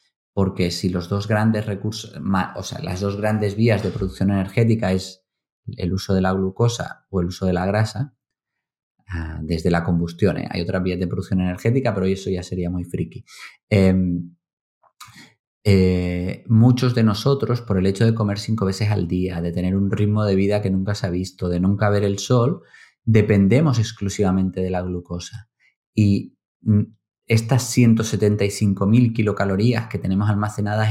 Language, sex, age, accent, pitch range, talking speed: Spanish, male, 30-49, Spanish, 95-115 Hz, 165 wpm